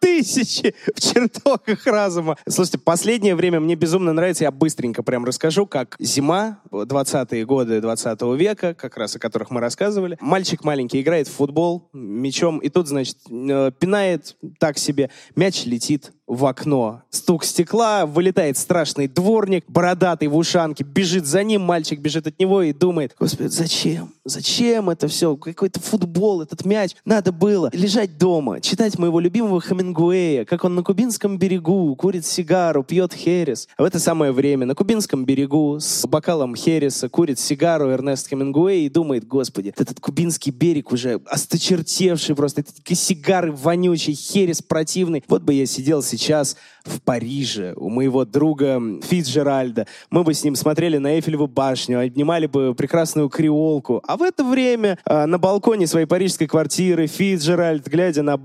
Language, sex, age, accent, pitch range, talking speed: Russian, male, 20-39, native, 145-185 Hz, 150 wpm